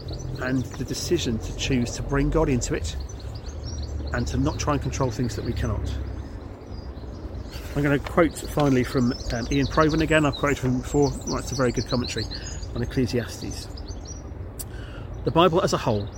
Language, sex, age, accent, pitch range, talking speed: English, male, 40-59, British, 95-145 Hz, 180 wpm